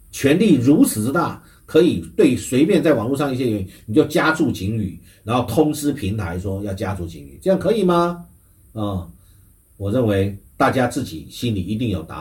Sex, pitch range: male, 95-125 Hz